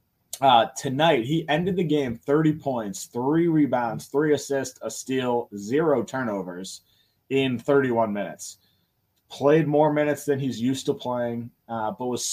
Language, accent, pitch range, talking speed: English, American, 115-150 Hz, 145 wpm